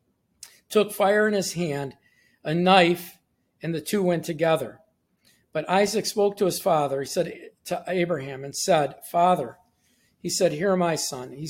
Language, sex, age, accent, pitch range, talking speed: English, male, 50-69, American, 160-195 Hz, 160 wpm